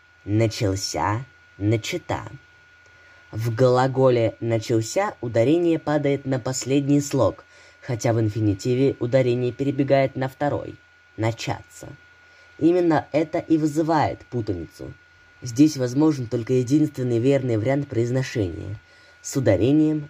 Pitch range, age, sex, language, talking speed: 110-155 Hz, 20-39, female, Russian, 95 wpm